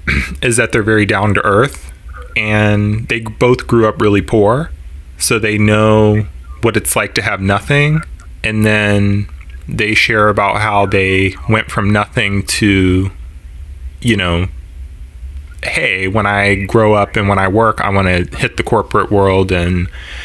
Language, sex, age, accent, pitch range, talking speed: English, male, 20-39, American, 85-105 Hz, 155 wpm